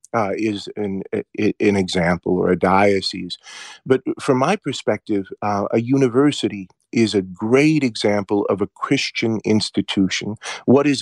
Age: 40-59